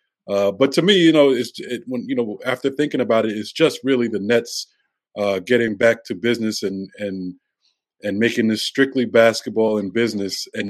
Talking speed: 195 wpm